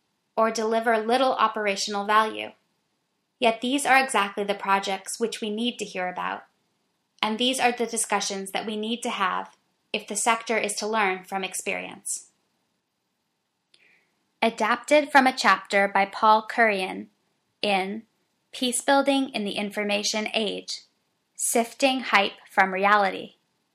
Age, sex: 10-29, female